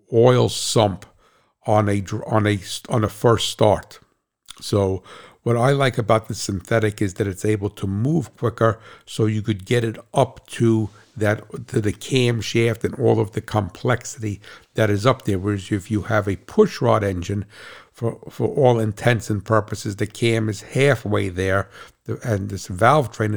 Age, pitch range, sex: 60-79, 105-120 Hz, male